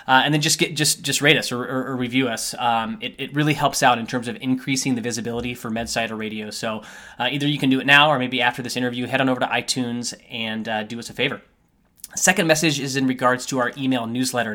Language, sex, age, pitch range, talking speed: English, male, 20-39, 120-140 Hz, 255 wpm